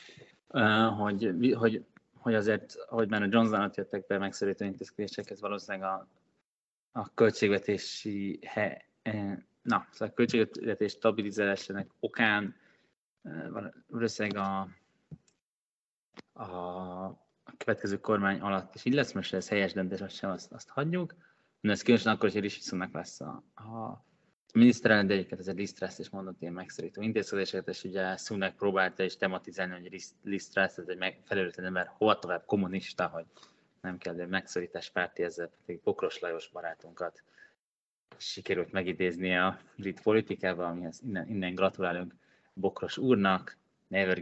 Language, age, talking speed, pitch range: Hungarian, 20-39, 135 wpm, 95-110 Hz